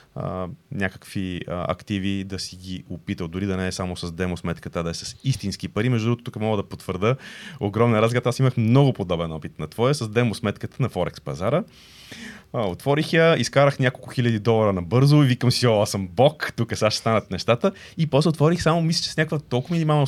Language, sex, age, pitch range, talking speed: Bulgarian, male, 30-49, 100-140 Hz, 220 wpm